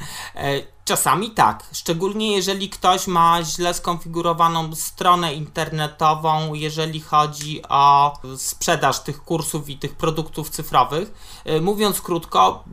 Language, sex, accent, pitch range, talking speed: Polish, male, native, 155-185 Hz, 105 wpm